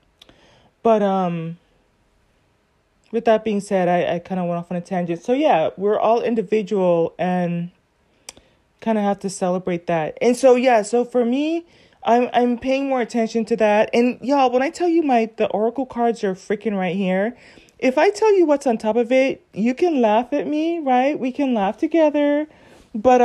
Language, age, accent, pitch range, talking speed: English, 30-49, American, 195-255 Hz, 190 wpm